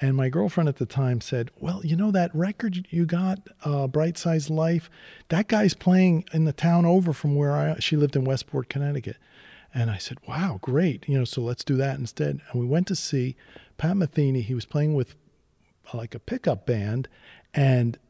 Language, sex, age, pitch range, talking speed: English, male, 40-59, 125-160 Hz, 200 wpm